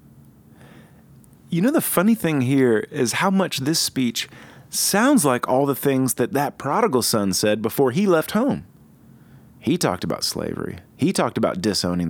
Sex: male